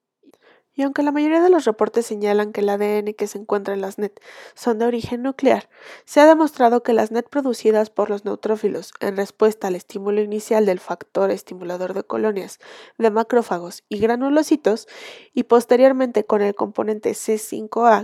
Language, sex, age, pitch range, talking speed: Spanish, female, 20-39, 205-270 Hz, 170 wpm